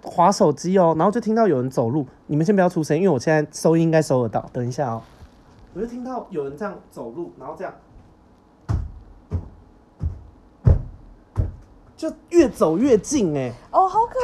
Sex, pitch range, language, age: male, 125-195 Hz, Chinese, 20-39